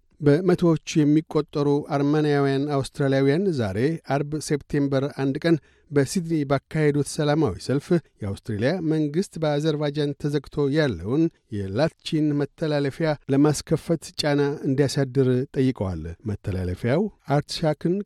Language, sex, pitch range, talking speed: Amharic, male, 135-155 Hz, 85 wpm